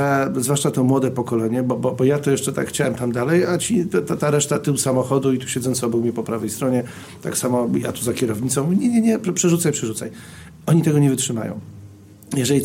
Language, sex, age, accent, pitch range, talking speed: Polish, male, 40-59, native, 120-155 Hz, 225 wpm